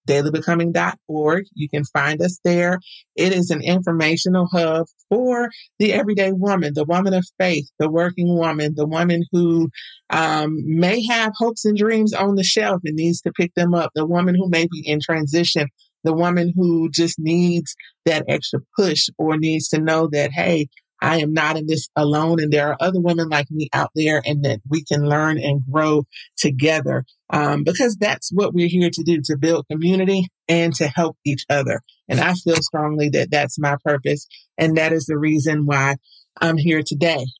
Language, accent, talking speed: English, American, 190 wpm